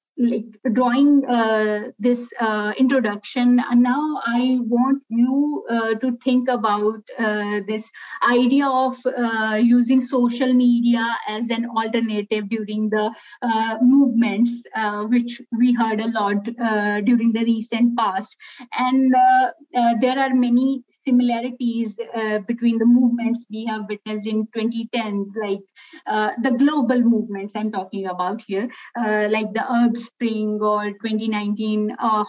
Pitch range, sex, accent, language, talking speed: 215-245 Hz, female, Indian, English, 135 wpm